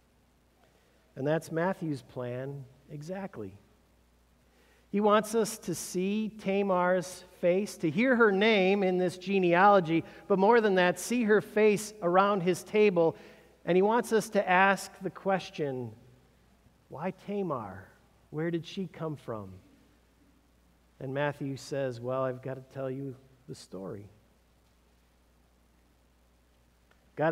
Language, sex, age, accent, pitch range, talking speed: English, male, 50-69, American, 130-205 Hz, 125 wpm